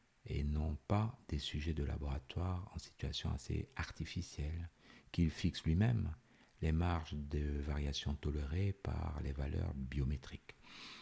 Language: French